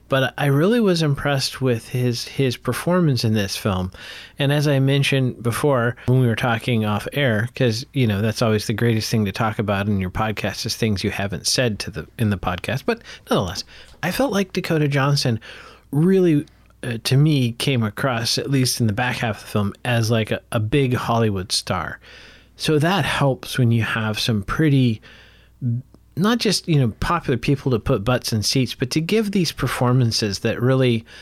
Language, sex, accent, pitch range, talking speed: English, male, American, 115-140 Hz, 195 wpm